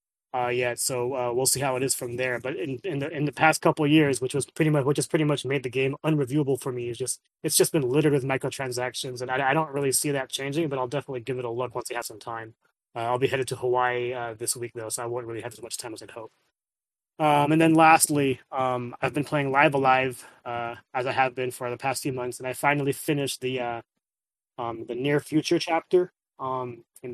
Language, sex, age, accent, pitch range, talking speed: English, male, 20-39, American, 125-150 Hz, 260 wpm